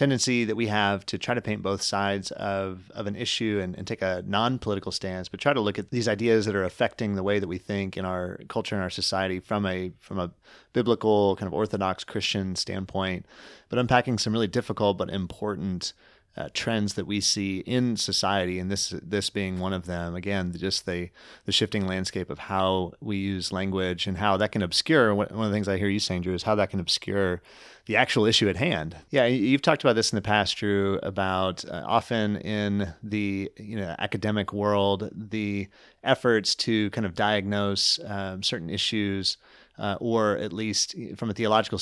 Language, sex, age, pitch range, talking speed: English, male, 30-49, 95-105 Hz, 205 wpm